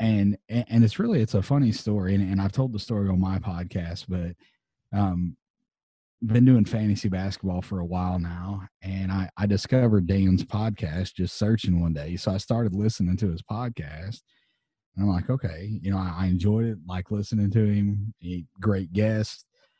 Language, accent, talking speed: English, American, 190 wpm